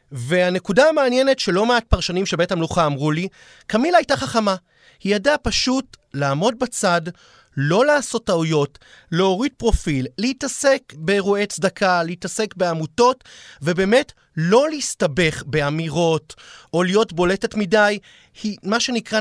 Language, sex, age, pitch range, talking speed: Hebrew, male, 30-49, 155-215 Hz, 120 wpm